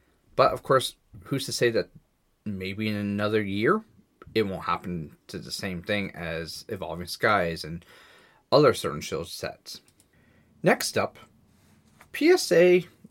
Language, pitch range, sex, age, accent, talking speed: English, 100-130 Hz, male, 30-49, American, 135 wpm